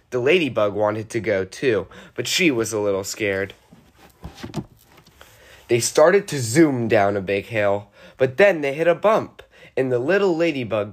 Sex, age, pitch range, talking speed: male, 20-39, 110-155 Hz, 165 wpm